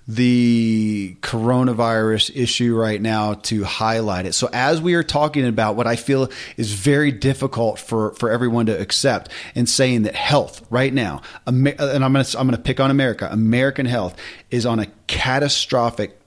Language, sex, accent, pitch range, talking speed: English, male, American, 115-140 Hz, 170 wpm